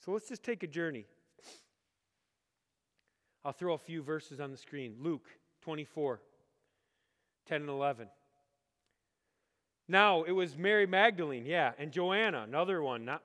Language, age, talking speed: English, 40-59, 135 wpm